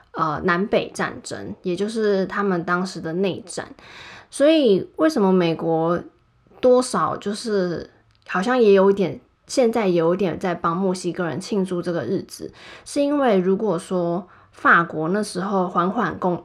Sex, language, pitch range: female, Chinese, 175-210 Hz